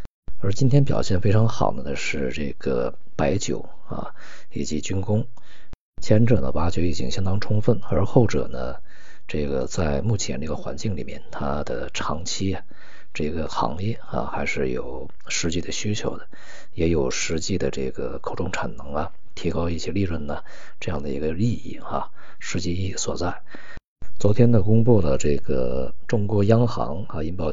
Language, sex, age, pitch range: Chinese, male, 50-69, 75-105 Hz